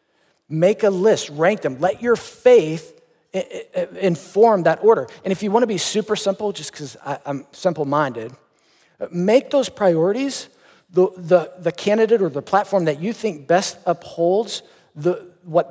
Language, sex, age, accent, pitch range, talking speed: English, male, 40-59, American, 150-195 Hz, 150 wpm